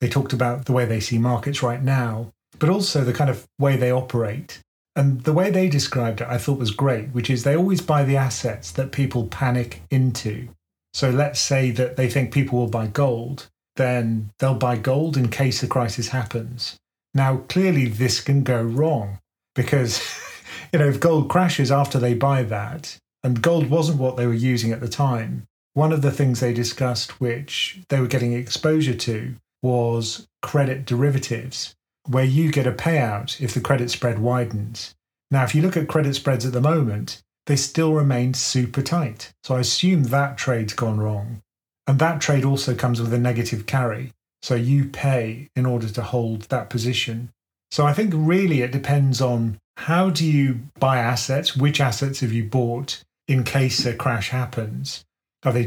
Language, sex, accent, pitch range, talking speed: English, male, British, 120-140 Hz, 185 wpm